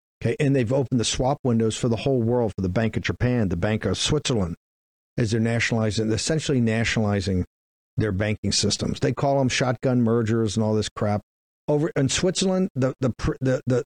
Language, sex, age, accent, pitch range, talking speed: English, male, 50-69, American, 115-145 Hz, 180 wpm